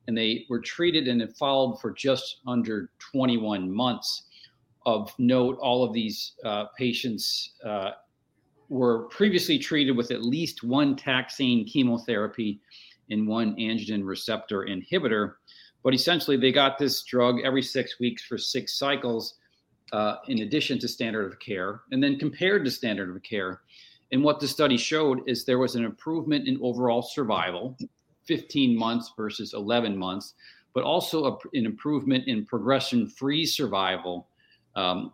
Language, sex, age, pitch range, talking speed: English, male, 40-59, 115-140 Hz, 145 wpm